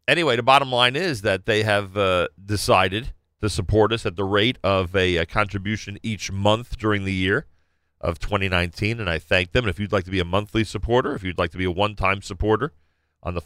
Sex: male